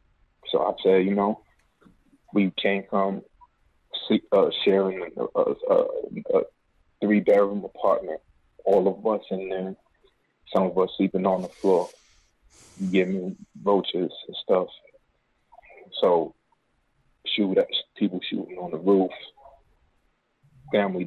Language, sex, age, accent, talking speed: English, male, 20-39, American, 115 wpm